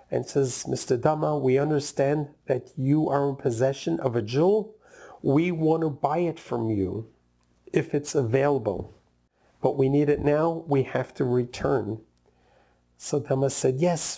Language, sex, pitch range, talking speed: English, male, 120-155 Hz, 155 wpm